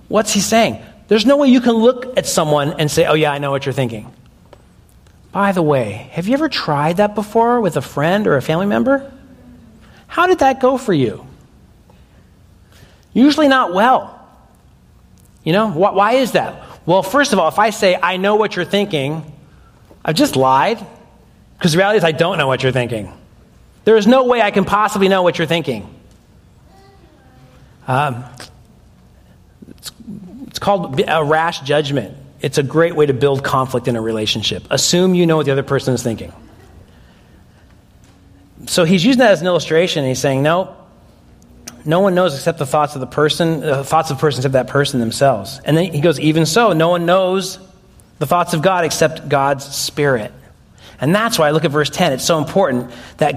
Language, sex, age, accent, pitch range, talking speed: English, male, 40-59, American, 135-200 Hz, 190 wpm